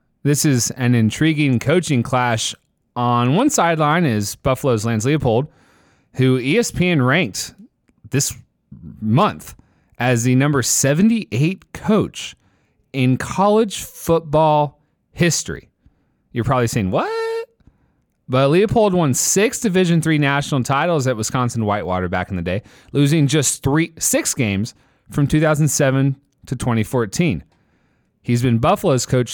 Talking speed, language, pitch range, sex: 120 wpm, English, 120-160 Hz, male